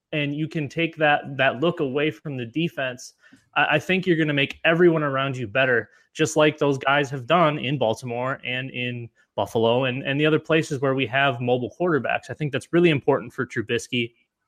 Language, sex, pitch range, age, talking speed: English, male, 130-155 Hz, 20-39, 205 wpm